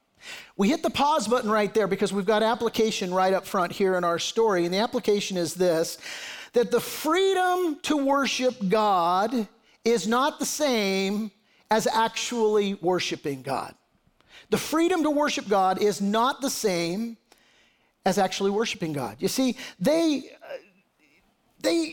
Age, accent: 50-69, American